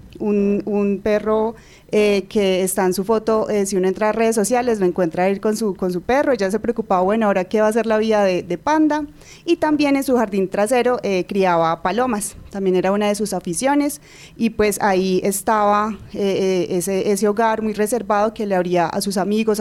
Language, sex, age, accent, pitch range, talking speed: Spanish, female, 20-39, Colombian, 190-220 Hz, 210 wpm